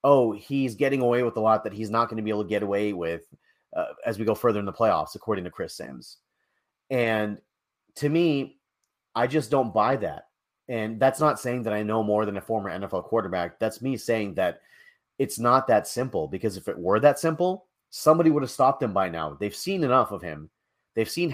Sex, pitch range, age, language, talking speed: male, 110-140 Hz, 30-49, English, 220 wpm